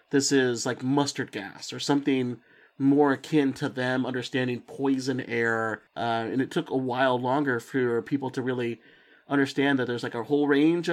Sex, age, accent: male, 30-49, American